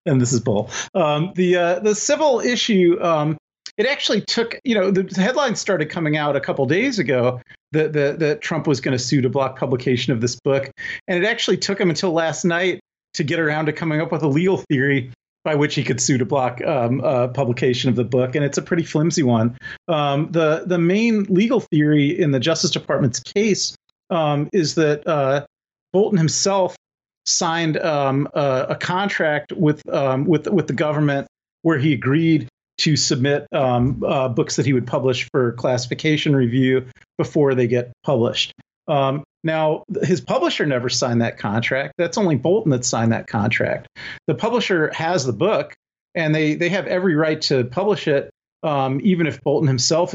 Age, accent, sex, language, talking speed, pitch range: 40-59, American, male, English, 190 wpm, 130-170 Hz